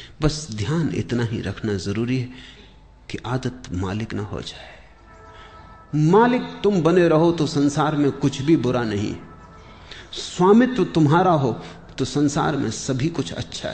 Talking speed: 145 wpm